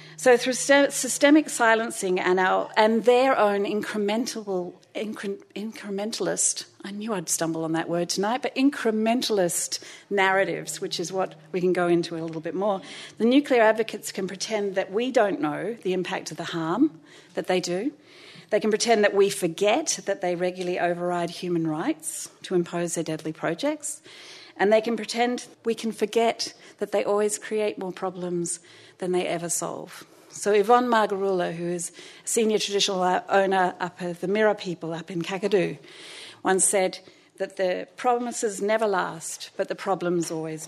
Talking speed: 165 wpm